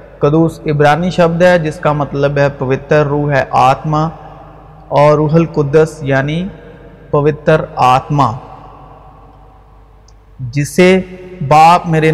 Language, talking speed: Urdu, 105 wpm